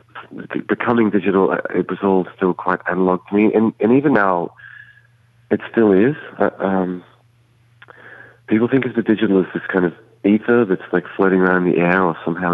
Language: English